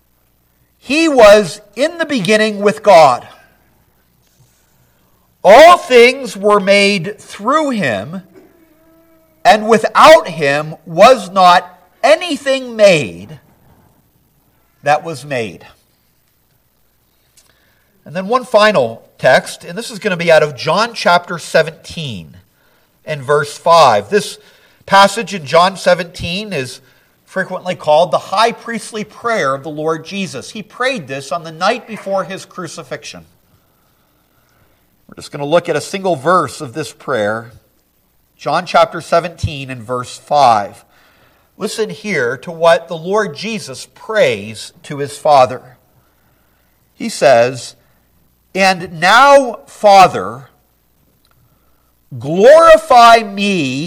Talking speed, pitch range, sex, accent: 115 wpm, 150-220 Hz, male, American